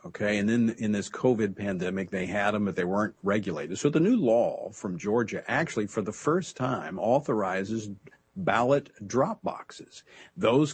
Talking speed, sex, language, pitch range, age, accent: 170 wpm, male, English, 105-160 Hz, 50-69, American